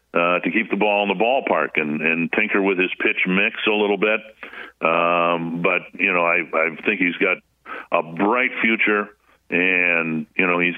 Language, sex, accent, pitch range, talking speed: English, male, American, 85-105 Hz, 190 wpm